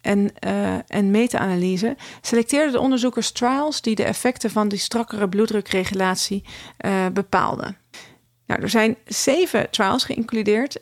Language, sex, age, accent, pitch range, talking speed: Dutch, female, 40-59, Dutch, 185-230 Hz, 130 wpm